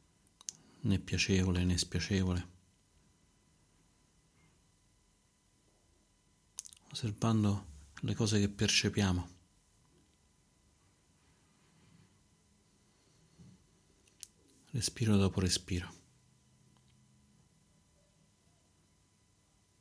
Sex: male